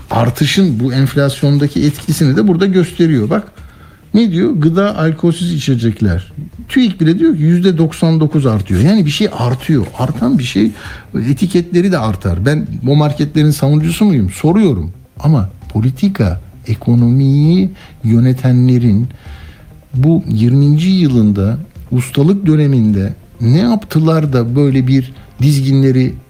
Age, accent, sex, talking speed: 60-79, native, male, 115 wpm